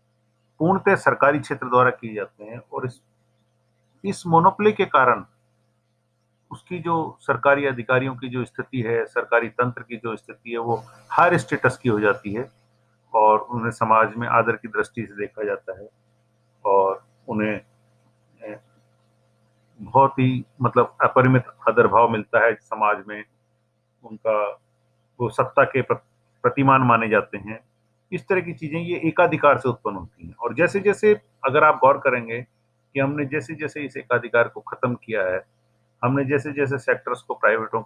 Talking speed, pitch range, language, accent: 155 wpm, 110-135 Hz, Hindi, native